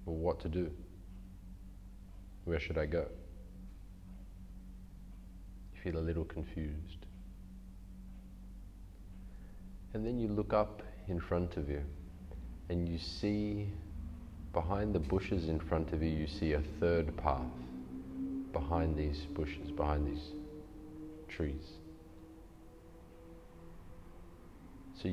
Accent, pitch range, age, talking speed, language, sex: Australian, 80-95 Hz, 30-49, 105 wpm, English, male